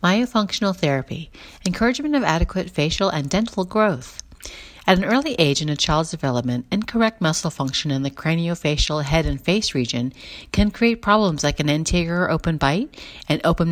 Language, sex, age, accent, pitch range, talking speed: English, female, 40-59, American, 145-205 Hz, 160 wpm